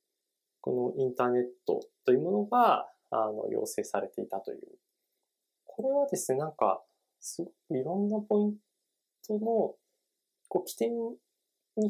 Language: Japanese